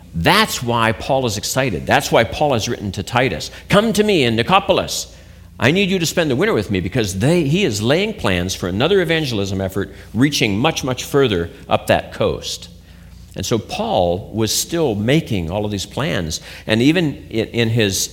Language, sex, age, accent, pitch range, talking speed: English, male, 50-69, American, 90-140 Hz, 185 wpm